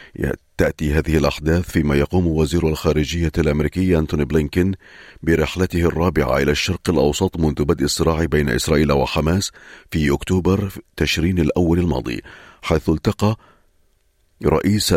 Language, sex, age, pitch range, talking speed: Arabic, male, 40-59, 75-90 Hz, 115 wpm